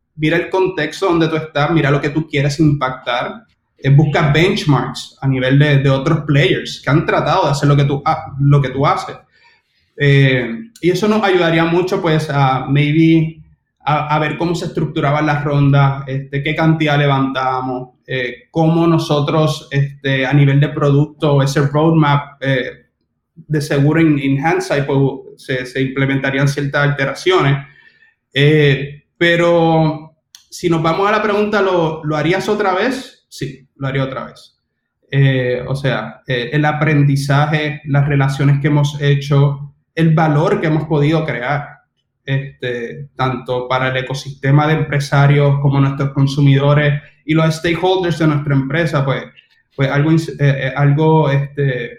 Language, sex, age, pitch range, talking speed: Spanish, male, 20-39, 135-160 Hz, 145 wpm